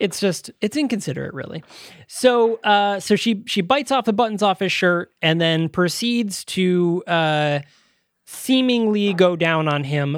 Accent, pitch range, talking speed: American, 150-200 Hz, 160 wpm